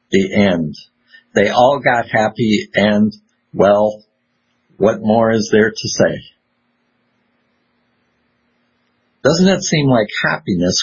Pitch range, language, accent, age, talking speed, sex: 100-130 Hz, English, American, 50-69, 105 wpm, male